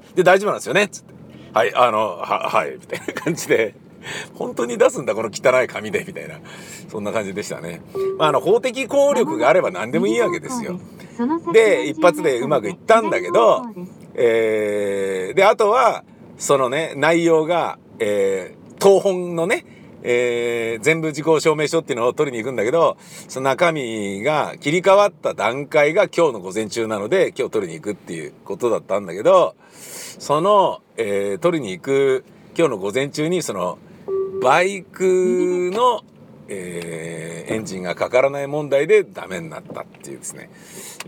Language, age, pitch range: Japanese, 50-69, 130-205 Hz